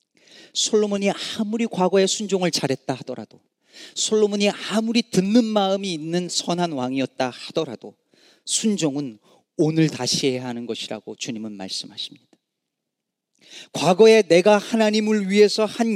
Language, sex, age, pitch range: Korean, male, 40-59, 130-205 Hz